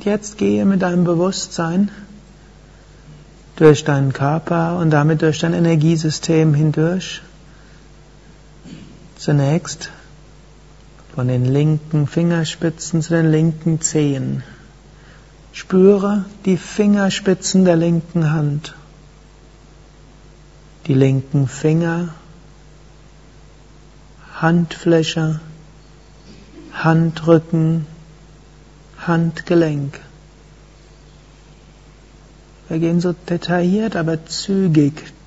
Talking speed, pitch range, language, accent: 70 wpm, 150-165 Hz, German, German